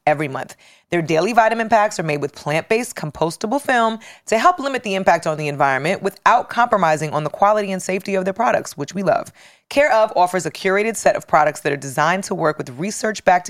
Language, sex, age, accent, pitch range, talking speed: English, female, 30-49, American, 155-215 Hz, 215 wpm